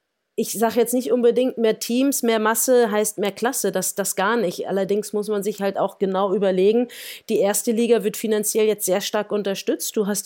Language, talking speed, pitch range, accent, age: German, 205 wpm, 195-230 Hz, German, 30-49